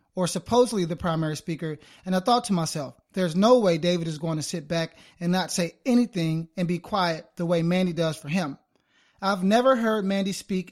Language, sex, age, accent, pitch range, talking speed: English, male, 30-49, American, 170-210 Hz, 205 wpm